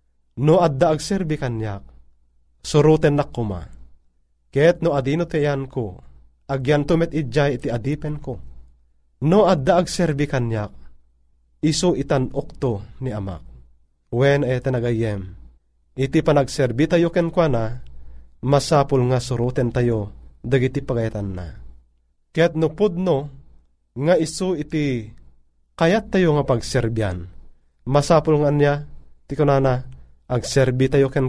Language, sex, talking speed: Filipino, male, 110 wpm